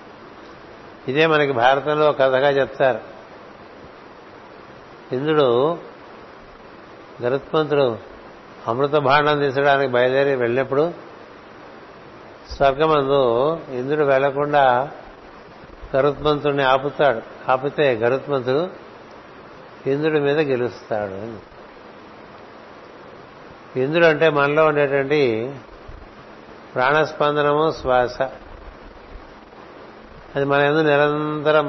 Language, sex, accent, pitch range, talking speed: Telugu, male, native, 130-150 Hz, 60 wpm